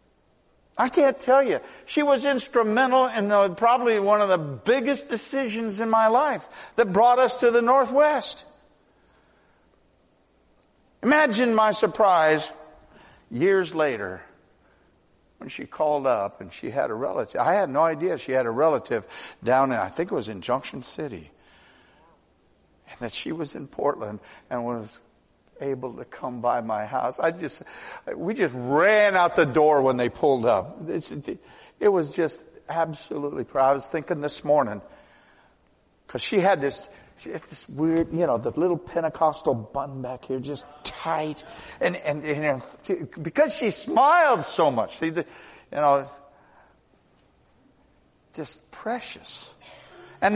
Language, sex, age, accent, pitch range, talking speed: English, male, 60-79, American, 150-235 Hz, 145 wpm